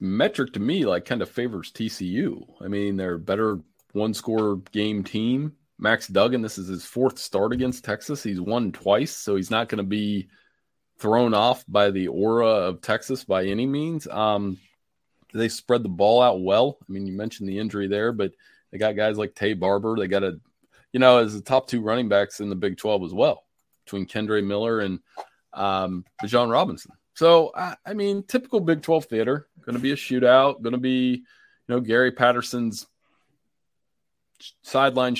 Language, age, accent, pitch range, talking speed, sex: English, 30-49, American, 100-125 Hz, 190 wpm, male